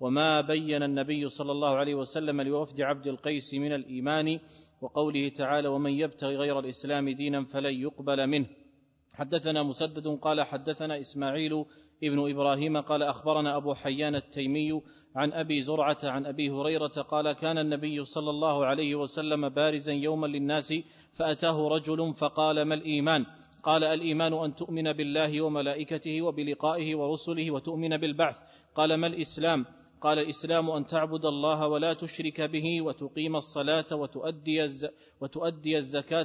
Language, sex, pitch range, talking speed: Arabic, male, 145-160 Hz, 130 wpm